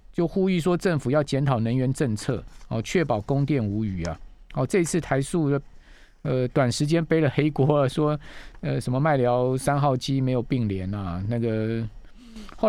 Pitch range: 115-155 Hz